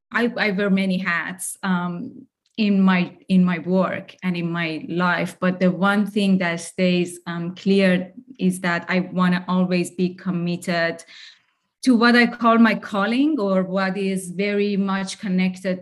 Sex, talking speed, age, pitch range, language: female, 160 wpm, 30-49, 180-205 Hz, English